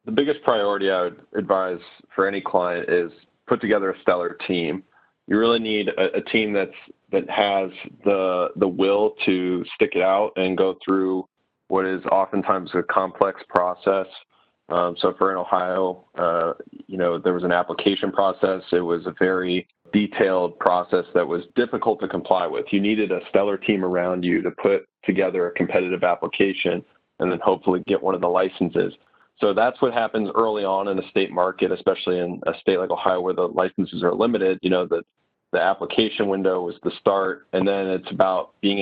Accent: American